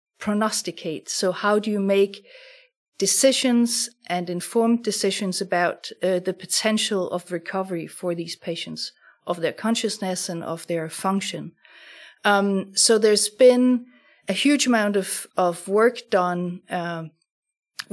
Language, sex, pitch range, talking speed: English, female, 180-225 Hz, 125 wpm